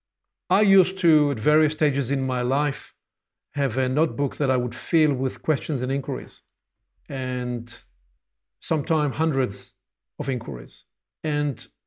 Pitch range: 125-160 Hz